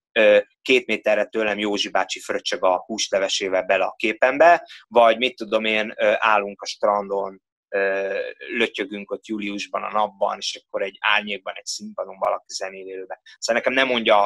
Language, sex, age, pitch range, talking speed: Hungarian, male, 20-39, 100-120 Hz, 145 wpm